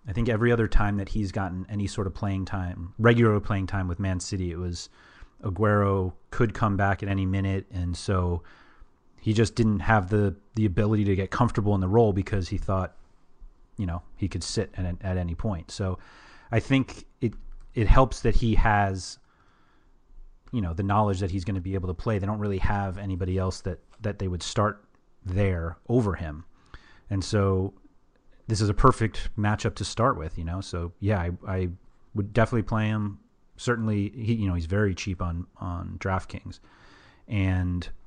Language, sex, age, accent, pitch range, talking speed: English, male, 30-49, American, 90-110 Hz, 190 wpm